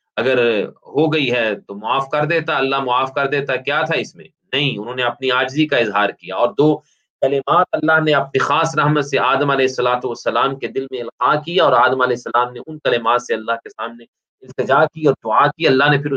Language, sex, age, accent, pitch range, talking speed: English, male, 30-49, Indian, 130-165 Hz, 225 wpm